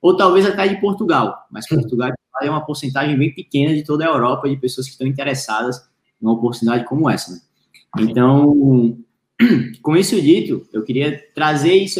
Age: 20-39